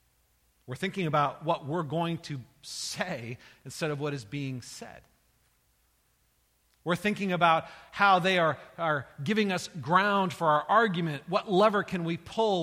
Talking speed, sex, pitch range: 150 wpm, male, 120-165 Hz